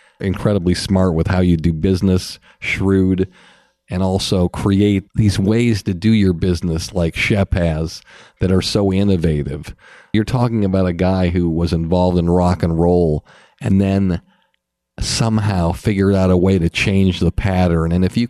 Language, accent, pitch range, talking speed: English, American, 90-105 Hz, 165 wpm